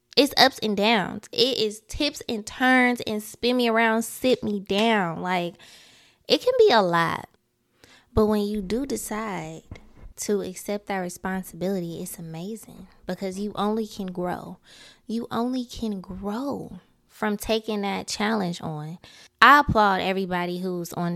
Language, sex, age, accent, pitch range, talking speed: English, female, 20-39, American, 175-220 Hz, 145 wpm